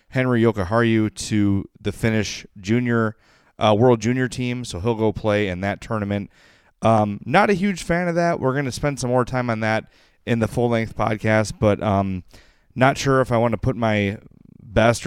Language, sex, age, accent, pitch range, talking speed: English, male, 30-49, American, 105-125 Hz, 195 wpm